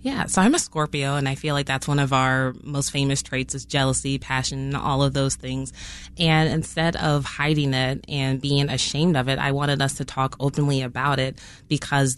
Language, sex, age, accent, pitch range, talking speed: English, female, 20-39, American, 135-155 Hz, 205 wpm